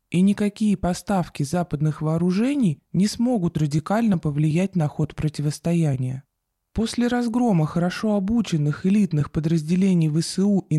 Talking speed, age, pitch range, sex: 110 wpm, 20-39, 155-200 Hz, male